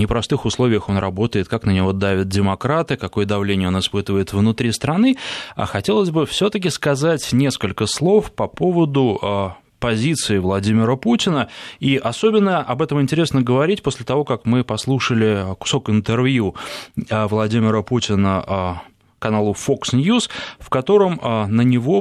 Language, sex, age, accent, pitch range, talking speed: Russian, male, 20-39, native, 105-140 Hz, 135 wpm